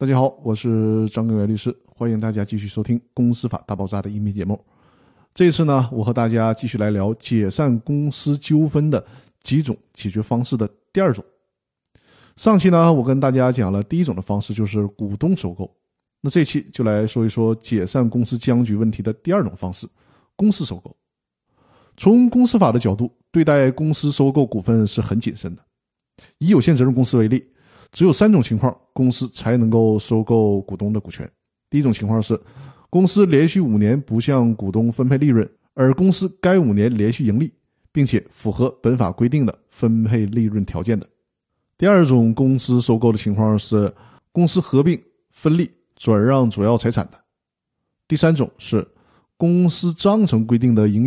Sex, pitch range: male, 110-145 Hz